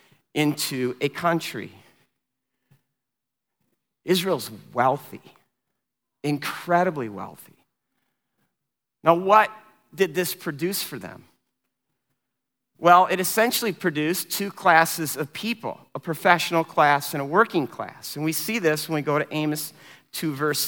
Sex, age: male, 50-69